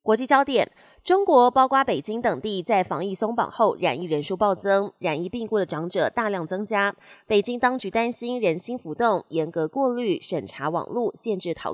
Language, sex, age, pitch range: Chinese, female, 20-39, 180-245 Hz